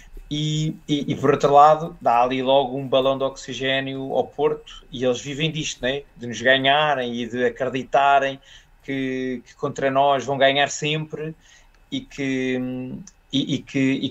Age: 20-39